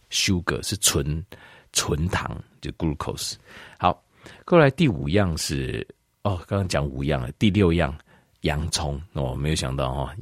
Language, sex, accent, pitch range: Chinese, male, native, 70-95 Hz